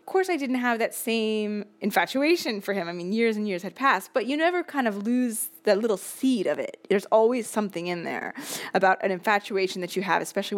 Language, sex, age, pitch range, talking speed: English, female, 20-39, 195-270 Hz, 225 wpm